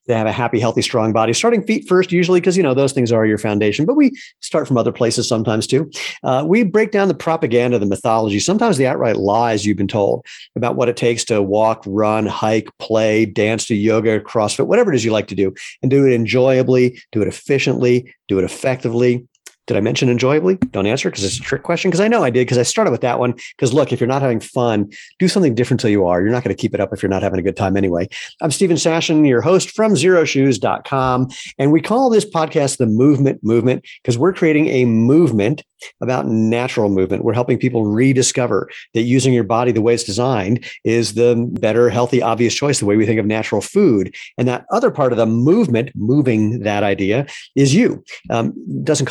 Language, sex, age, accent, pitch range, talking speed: English, male, 50-69, American, 110-135 Hz, 225 wpm